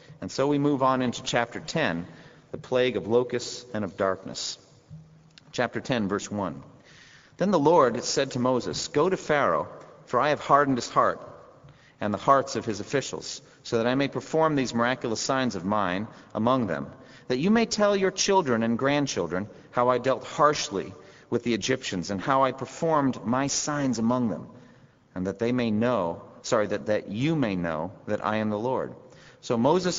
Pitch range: 115-155 Hz